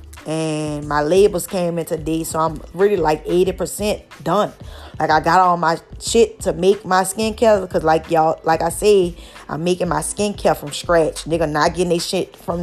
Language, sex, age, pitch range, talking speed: English, female, 10-29, 160-190 Hz, 190 wpm